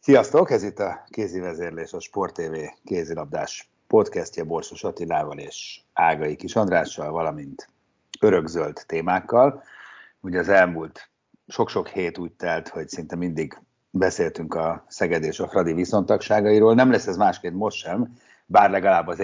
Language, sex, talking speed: Hungarian, male, 145 wpm